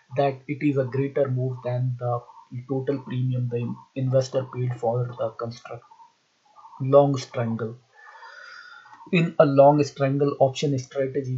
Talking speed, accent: 125 wpm, Indian